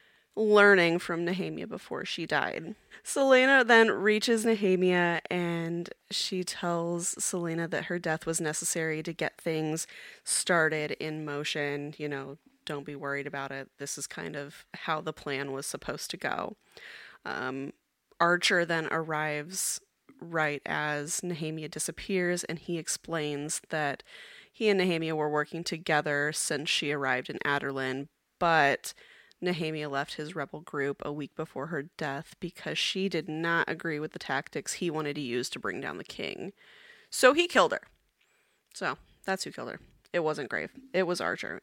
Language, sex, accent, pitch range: English, female, American, 150-185 Hz